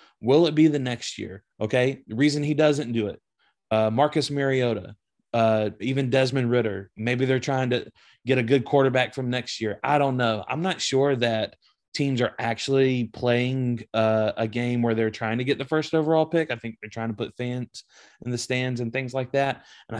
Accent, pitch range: American, 115-145 Hz